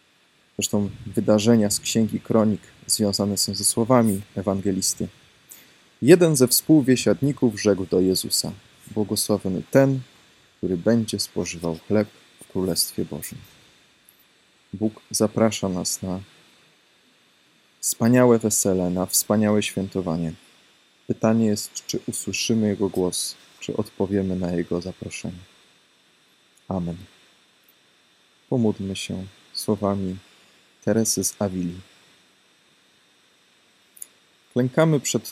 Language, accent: Polish, native